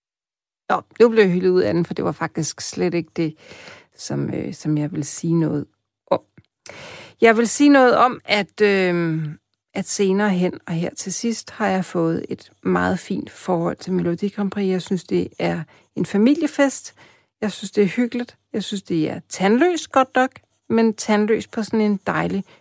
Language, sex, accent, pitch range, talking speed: Danish, female, native, 160-210 Hz, 185 wpm